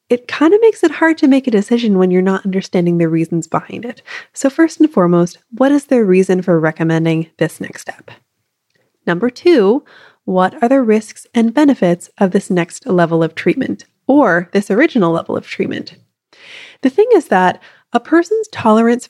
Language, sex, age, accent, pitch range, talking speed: English, female, 20-39, American, 175-235 Hz, 180 wpm